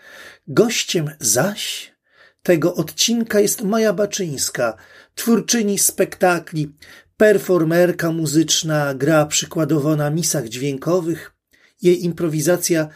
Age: 40-59